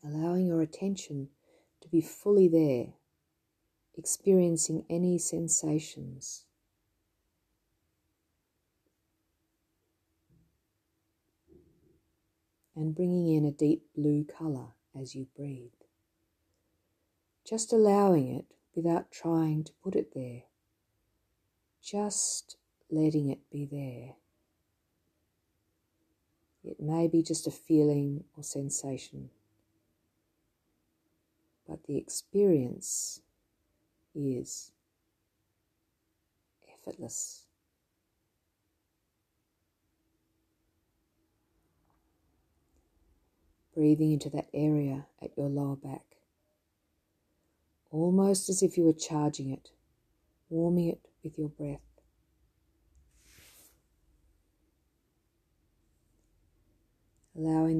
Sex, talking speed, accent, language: female, 70 wpm, Australian, English